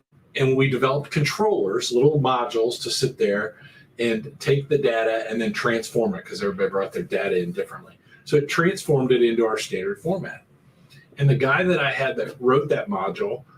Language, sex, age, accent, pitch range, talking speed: English, male, 40-59, American, 135-175 Hz, 185 wpm